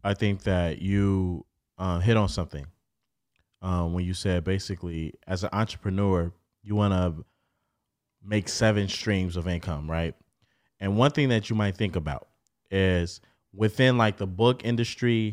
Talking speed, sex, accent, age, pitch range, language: 155 wpm, male, American, 20-39, 95-115 Hz, English